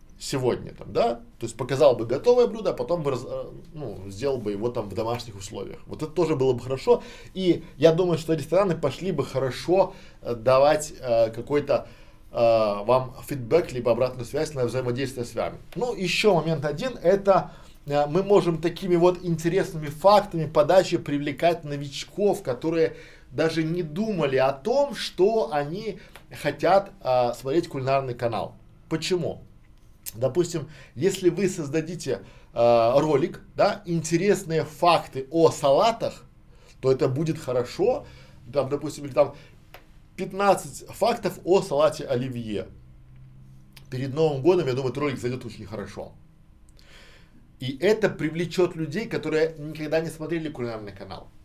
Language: Russian